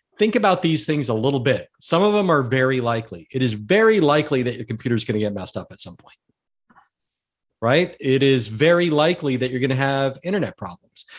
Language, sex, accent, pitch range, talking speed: English, male, American, 125-165 Hz, 220 wpm